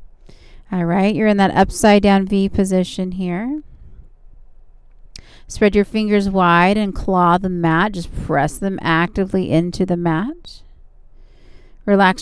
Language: English